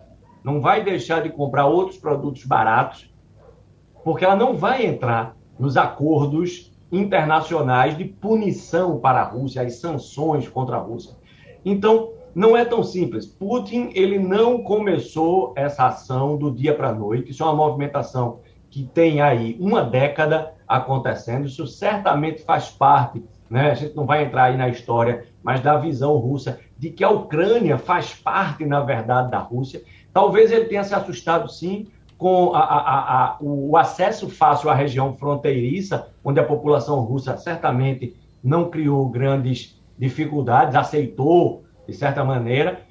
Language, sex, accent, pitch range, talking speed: Portuguese, male, Brazilian, 130-185 Hz, 145 wpm